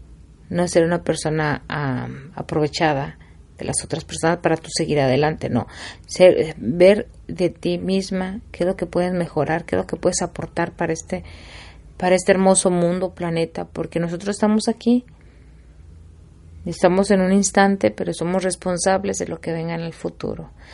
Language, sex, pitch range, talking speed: Spanish, female, 150-185 Hz, 170 wpm